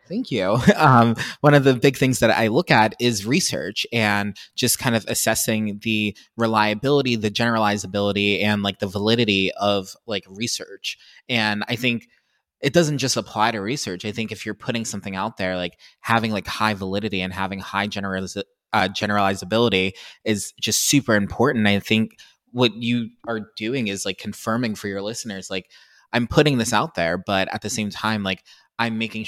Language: English